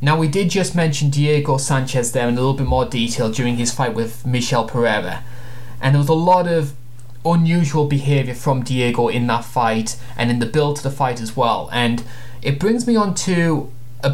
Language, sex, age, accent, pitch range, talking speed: English, male, 20-39, British, 120-145 Hz, 210 wpm